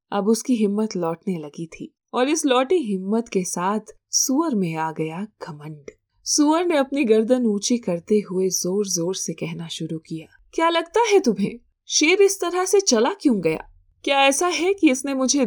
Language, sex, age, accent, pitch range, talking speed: Hindi, female, 20-39, native, 185-270 Hz, 180 wpm